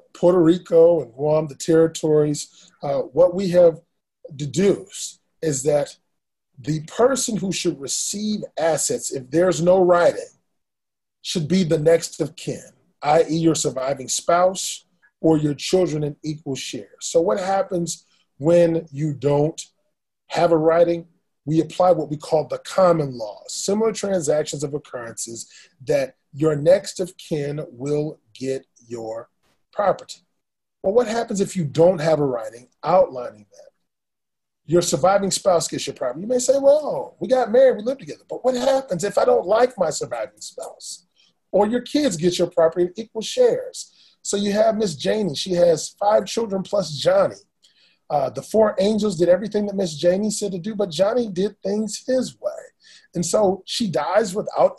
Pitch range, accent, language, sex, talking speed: 155-210 Hz, American, English, male, 165 wpm